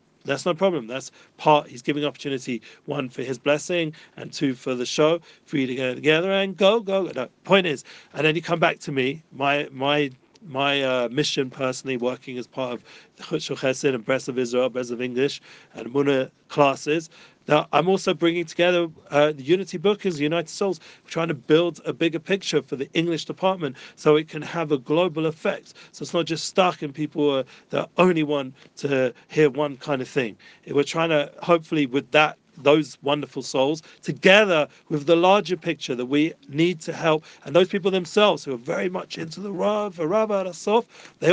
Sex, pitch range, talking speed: male, 140-175 Hz, 200 wpm